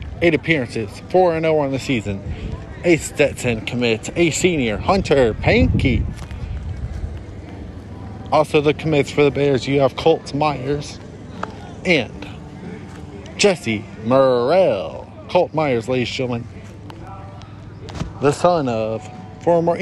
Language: English